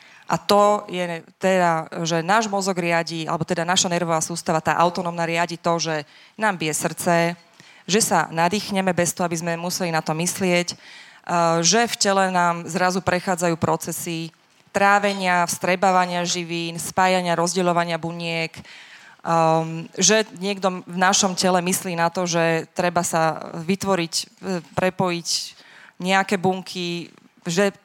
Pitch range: 170-195 Hz